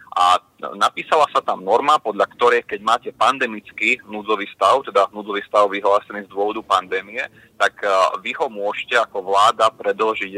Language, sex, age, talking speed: Slovak, male, 30-49, 150 wpm